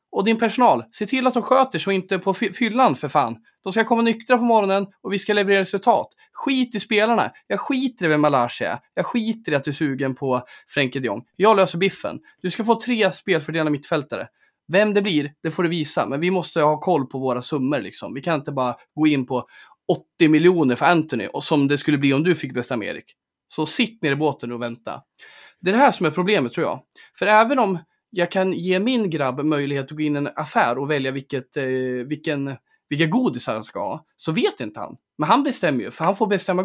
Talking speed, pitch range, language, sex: 240 wpm, 145-215 Hz, Swedish, male